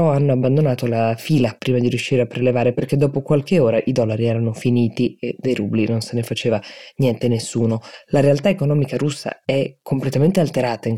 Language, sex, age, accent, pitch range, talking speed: Italian, female, 20-39, native, 120-155 Hz, 185 wpm